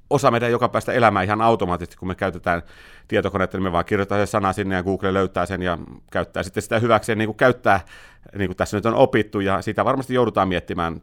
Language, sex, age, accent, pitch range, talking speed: Finnish, male, 30-49, native, 90-110 Hz, 220 wpm